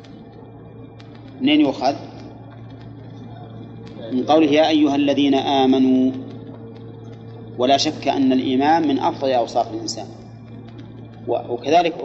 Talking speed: 85 wpm